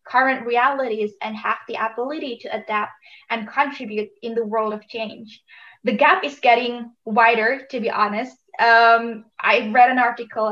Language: English